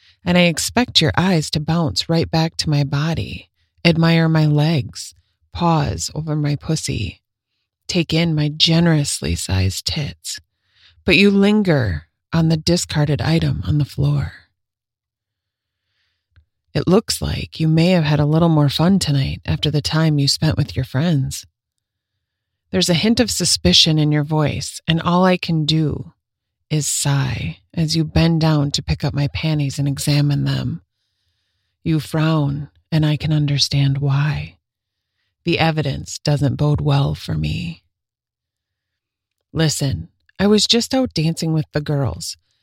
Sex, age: female, 30-49